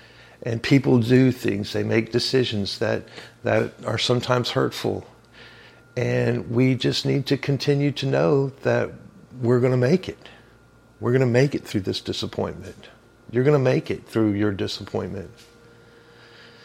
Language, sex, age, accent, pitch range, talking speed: English, male, 50-69, American, 110-125 Hz, 150 wpm